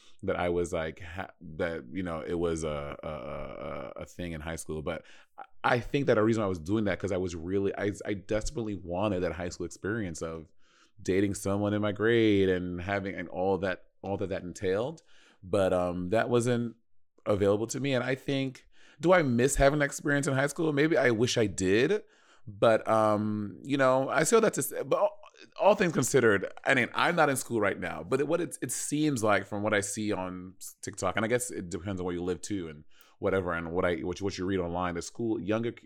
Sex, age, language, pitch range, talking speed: male, 30-49, English, 95-125 Hz, 220 wpm